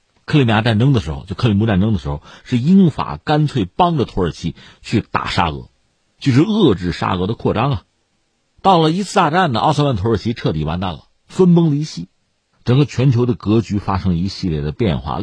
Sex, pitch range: male, 95-155 Hz